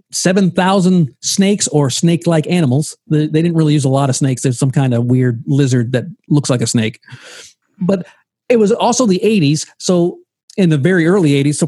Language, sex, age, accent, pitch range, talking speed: English, male, 40-59, American, 150-200 Hz, 195 wpm